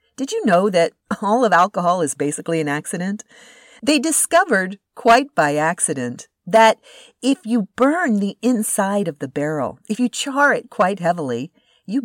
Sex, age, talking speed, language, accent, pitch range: female, 50-69, 160 wpm, English, American, 165-255 Hz